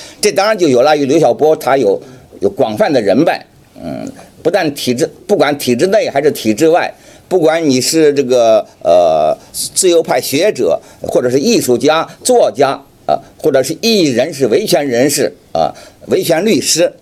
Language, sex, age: Chinese, male, 50-69